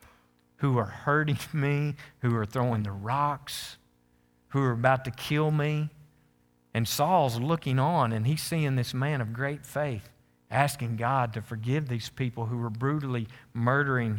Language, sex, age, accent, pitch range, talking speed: English, male, 50-69, American, 115-145 Hz, 155 wpm